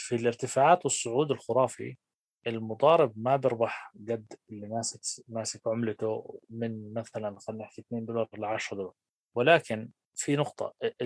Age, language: 20-39, Arabic